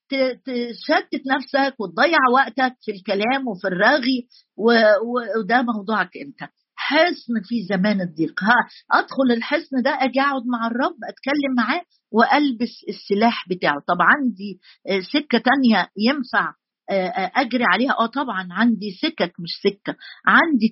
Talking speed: 125 wpm